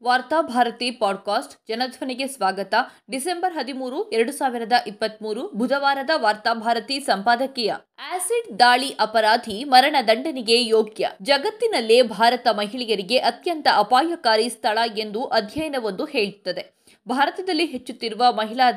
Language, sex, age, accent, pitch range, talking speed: Kannada, female, 20-39, native, 225-310 Hz, 105 wpm